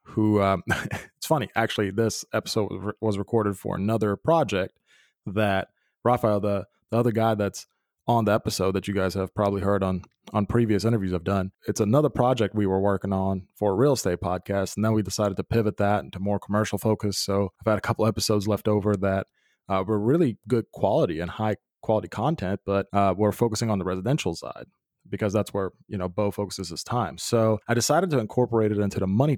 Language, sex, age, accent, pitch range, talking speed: English, male, 20-39, American, 100-115 Hz, 210 wpm